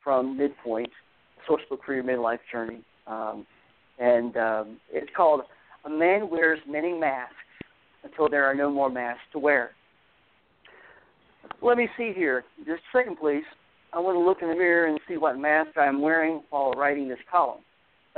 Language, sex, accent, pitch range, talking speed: English, male, American, 135-165 Hz, 170 wpm